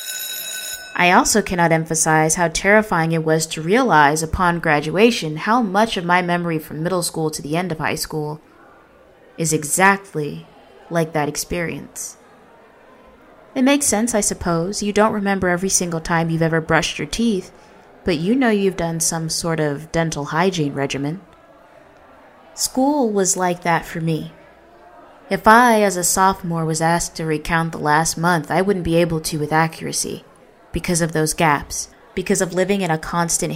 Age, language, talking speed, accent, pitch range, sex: 20-39, English, 165 wpm, American, 160-190 Hz, female